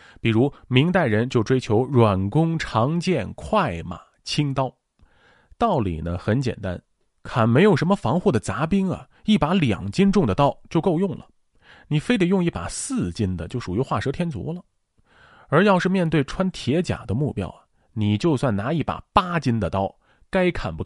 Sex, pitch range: male, 105-165 Hz